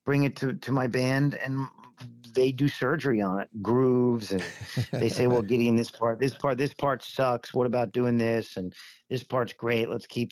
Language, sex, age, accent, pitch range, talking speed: English, male, 40-59, American, 105-130 Hz, 205 wpm